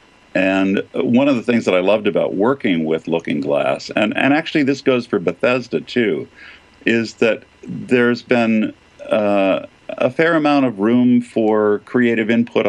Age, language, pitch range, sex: 50-69, English, 90-120 Hz, male